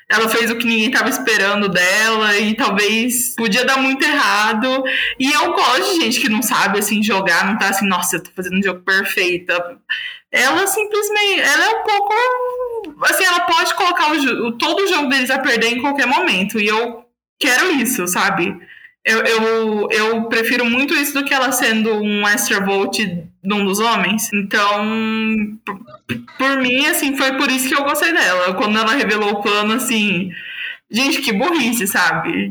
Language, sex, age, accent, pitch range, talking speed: Portuguese, female, 20-39, Brazilian, 205-275 Hz, 170 wpm